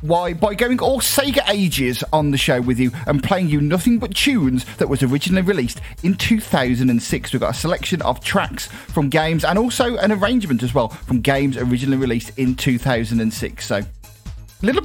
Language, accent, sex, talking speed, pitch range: English, British, male, 180 wpm, 130-205 Hz